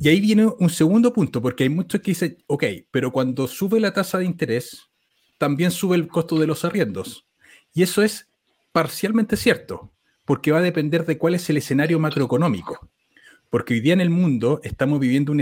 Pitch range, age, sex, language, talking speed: 125-165 Hz, 40-59, male, Spanish, 195 wpm